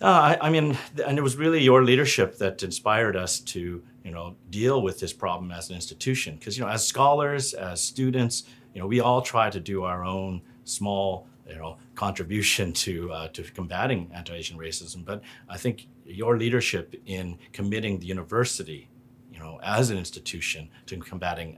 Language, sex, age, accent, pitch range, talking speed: English, male, 40-59, American, 90-125 Hz, 180 wpm